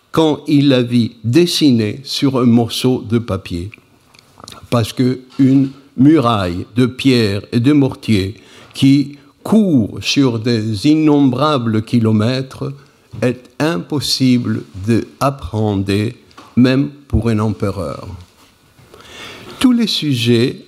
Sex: male